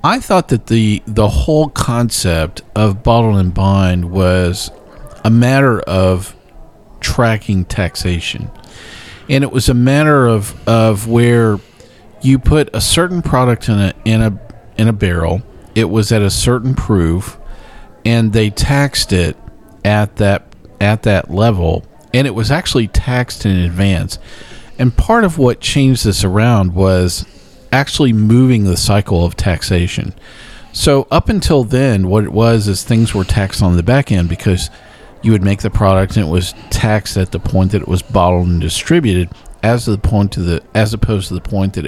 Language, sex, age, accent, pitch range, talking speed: English, male, 50-69, American, 95-120 Hz, 165 wpm